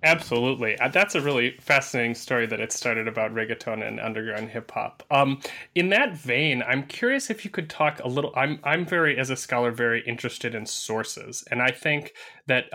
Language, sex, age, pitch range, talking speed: English, male, 30-49, 115-140 Hz, 195 wpm